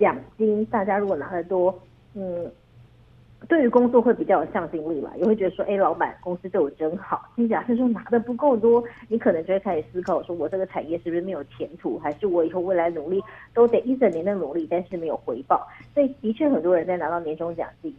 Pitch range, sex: 165-225 Hz, female